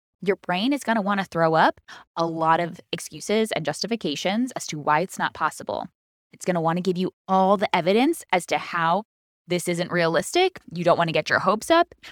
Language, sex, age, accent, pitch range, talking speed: English, female, 20-39, American, 165-220 Hz, 225 wpm